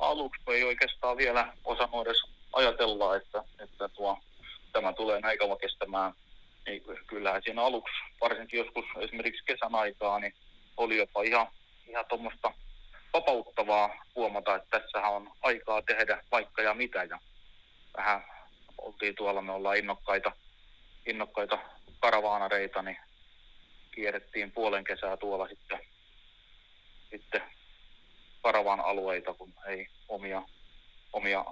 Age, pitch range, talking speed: 30-49, 95-110 Hz, 115 wpm